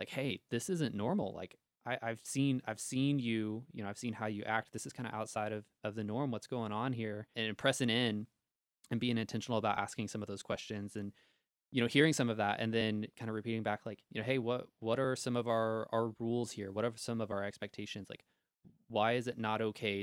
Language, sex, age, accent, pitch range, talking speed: English, male, 20-39, American, 105-120 Hz, 245 wpm